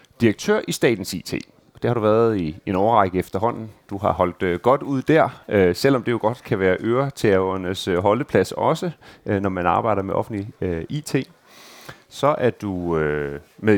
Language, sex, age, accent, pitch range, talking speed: Danish, male, 30-49, native, 95-125 Hz, 165 wpm